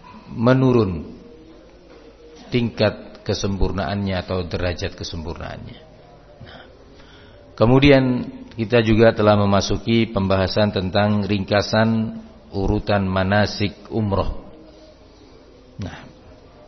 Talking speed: 70 wpm